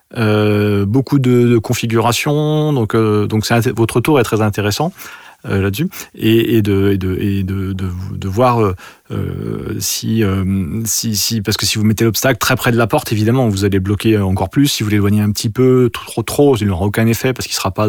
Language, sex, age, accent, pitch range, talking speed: French, male, 30-49, French, 105-130 Hz, 230 wpm